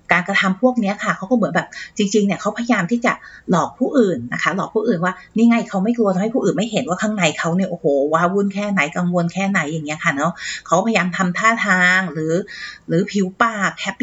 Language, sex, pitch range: Thai, female, 175-220 Hz